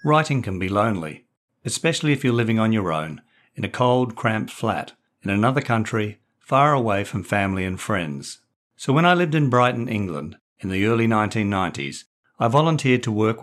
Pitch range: 100-130 Hz